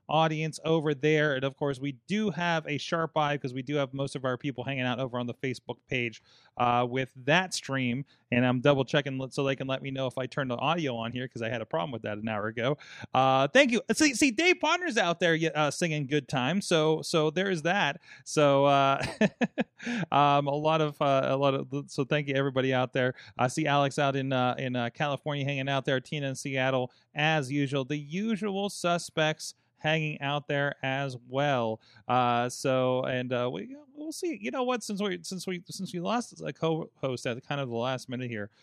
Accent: American